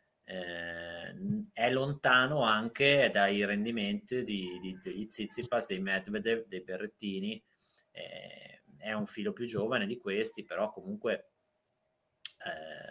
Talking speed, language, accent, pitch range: 115 wpm, Italian, native, 95-120 Hz